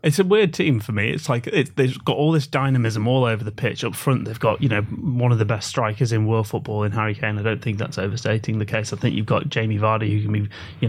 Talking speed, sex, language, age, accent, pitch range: 280 wpm, male, English, 30-49, British, 110-130 Hz